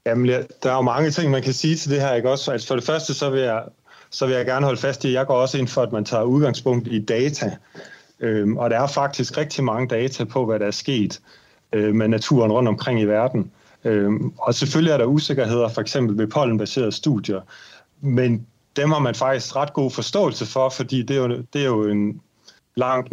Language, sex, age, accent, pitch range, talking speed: Danish, male, 30-49, native, 115-135 Hz, 230 wpm